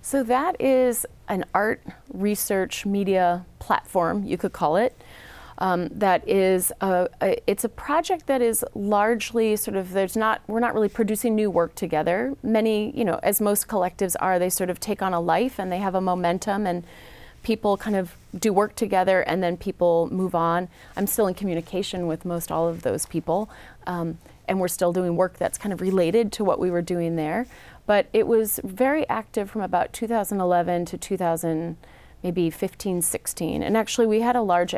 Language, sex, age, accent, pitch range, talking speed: English, female, 30-49, American, 170-215 Hz, 185 wpm